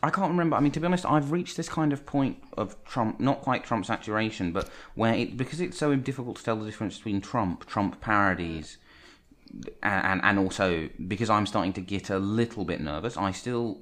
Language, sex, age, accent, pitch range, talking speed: English, male, 30-49, British, 80-110 Hz, 215 wpm